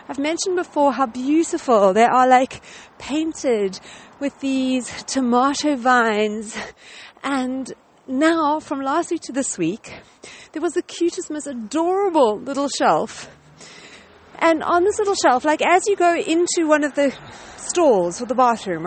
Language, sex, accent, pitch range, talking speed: English, female, British, 255-340 Hz, 145 wpm